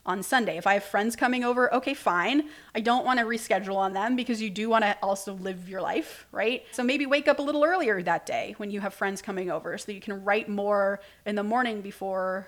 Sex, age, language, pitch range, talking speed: female, 30-49, English, 205-255 Hz, 245 wpm